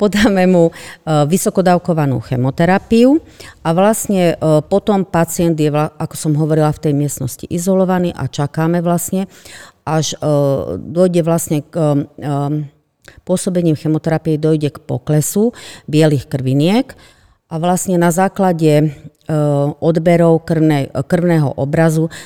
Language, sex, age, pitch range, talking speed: Slovak, female, 40-59, 145-180 Hz, 100 wpm